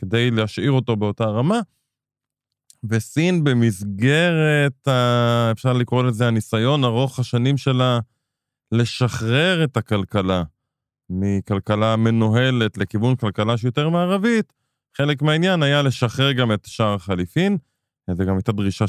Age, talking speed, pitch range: 20-39, 110 wpm, 110-135 Hz